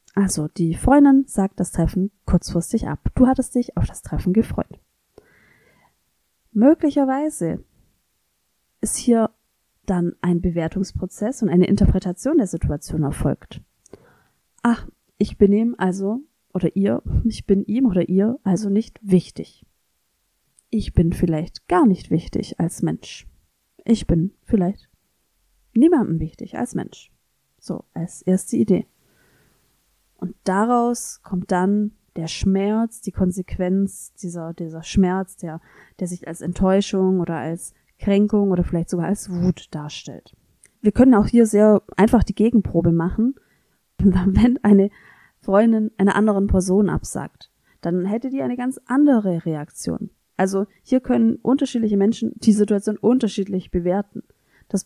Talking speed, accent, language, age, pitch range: 130 wpm, German, German, 30-49, 180-225 Hz